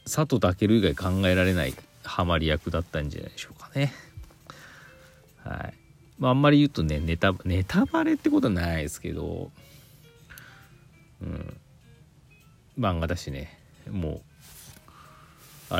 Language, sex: Japanese, male